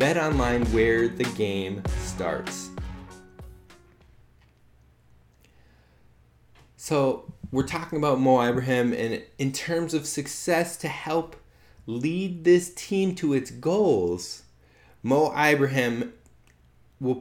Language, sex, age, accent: English, male, 20-39, American